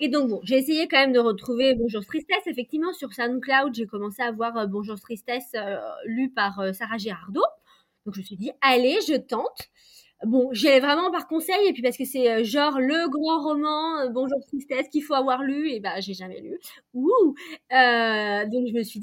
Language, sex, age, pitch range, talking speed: French, female, 20-39, 245-330 Hz, 210 wpm